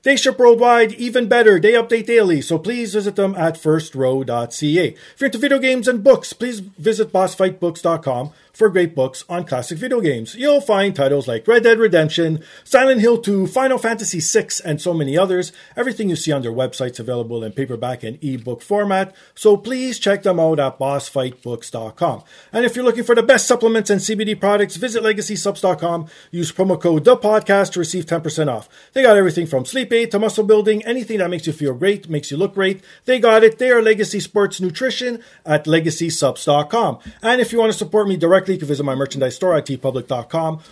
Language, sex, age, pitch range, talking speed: English, male, 40-59, 145-220 Hz, 195 wpm